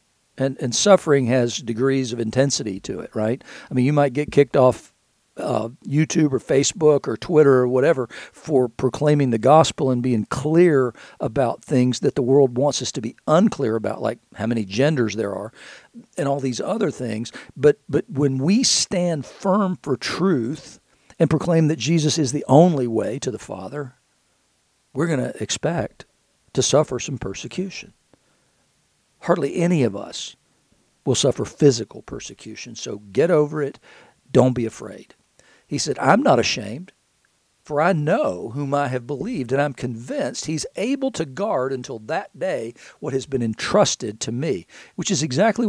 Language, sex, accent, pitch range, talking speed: English, male, American, 125-165 Hz, 165 wpm